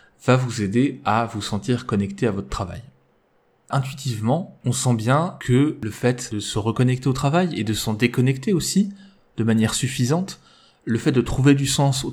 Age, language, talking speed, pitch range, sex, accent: 20-39, French, 185 wpm, 110-140 Hz, male, French